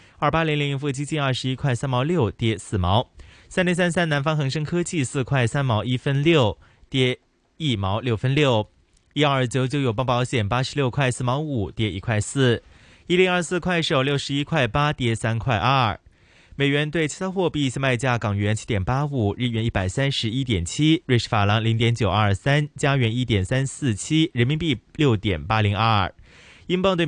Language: Chinese